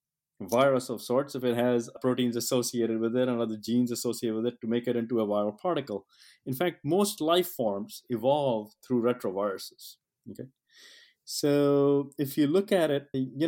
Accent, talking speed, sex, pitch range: Indian, 175 wpm, male, 120-145 Hz